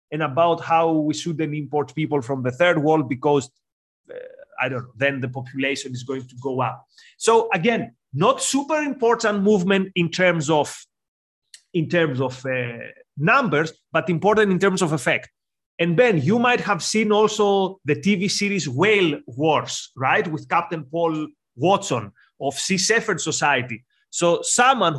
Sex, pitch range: male, 150-205 Hz